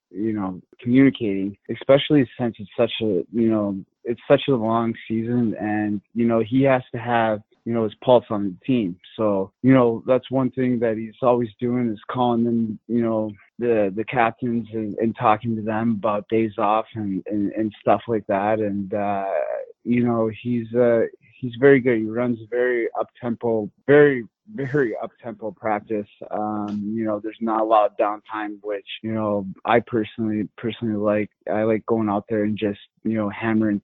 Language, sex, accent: English, male, American